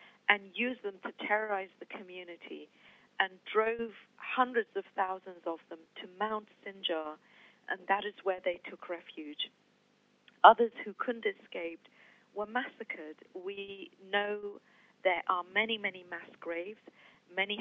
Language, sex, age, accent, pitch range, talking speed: English, female, 40-59, British, 175-220 Hz, 135 wpm